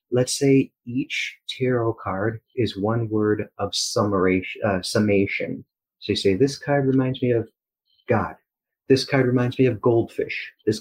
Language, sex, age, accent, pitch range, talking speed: English, male, 30-49, American, 105-125 Hz, 150 wpm